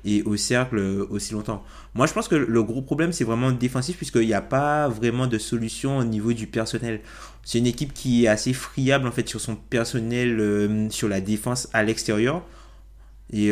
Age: 20-39